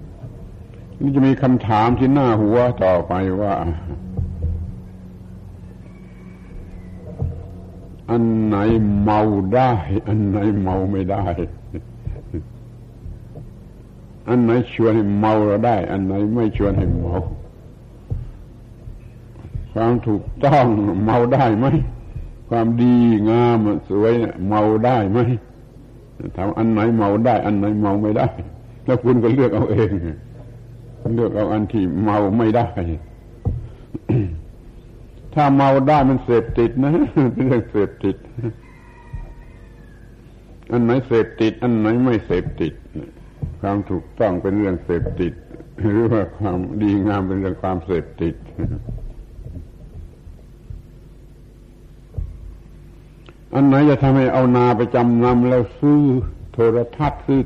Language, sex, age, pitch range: Thai, male, 70-89, 95-120 Hz